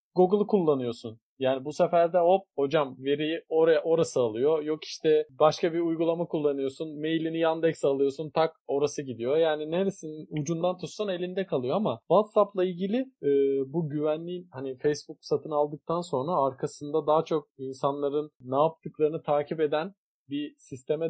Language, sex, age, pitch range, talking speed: Turkish, male, 40-59, 150-180 Hz, 145 wpm